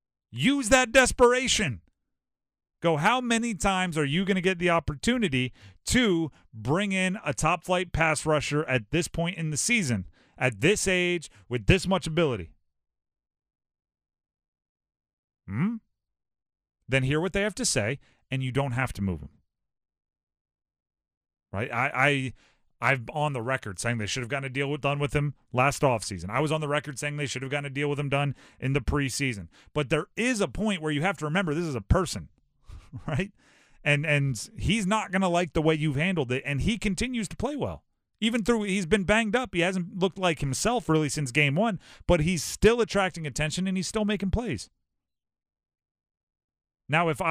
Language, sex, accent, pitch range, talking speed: English, male, American, 135-190 Hz, 190 wpm